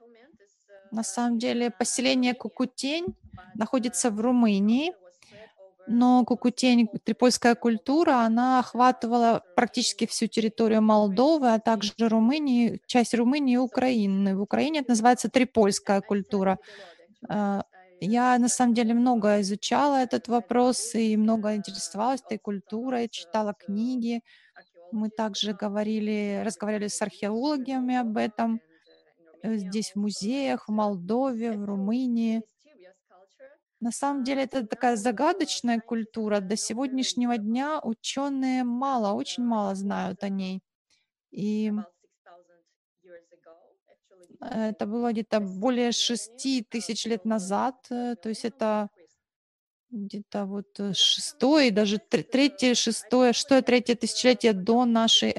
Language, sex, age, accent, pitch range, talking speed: Russian, female, 20-39, native, 205-250 Hz, 110 wpm